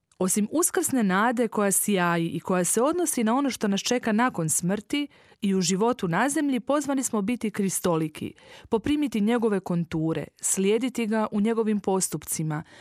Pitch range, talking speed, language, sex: 170-230 Hz, 155 wpm, Croatian, female